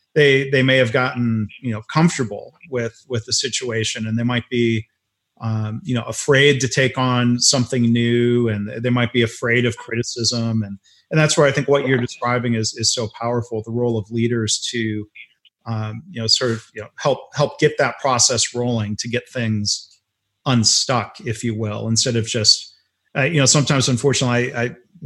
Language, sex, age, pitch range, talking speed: English, male, 30-49, 110-130 Hz, 195 wpm